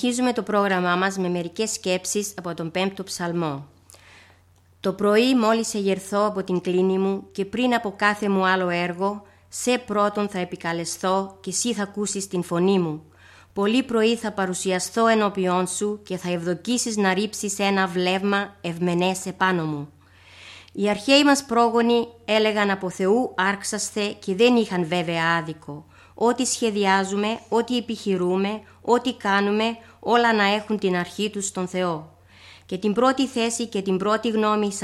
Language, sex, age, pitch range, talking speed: Greek, female, 30-49, 180-215 Hz, 155 wpm